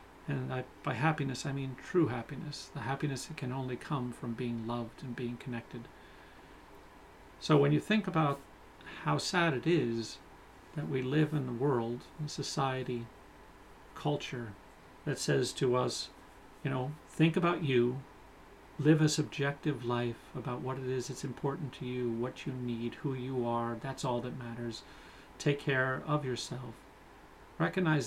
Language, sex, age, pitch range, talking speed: English, male, 40-59, 125-150 Hz, 160 wpm